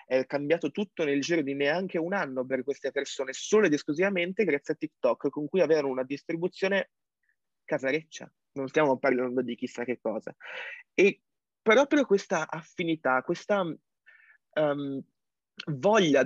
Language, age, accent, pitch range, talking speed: Italian, 20-39, native, 135-170 Hz, 135 wpm